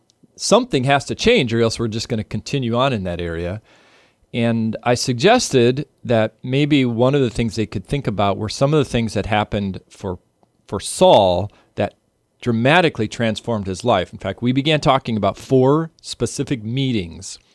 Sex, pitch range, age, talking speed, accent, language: male, 100-130 Hz, 40-59, 180 wpm, American, English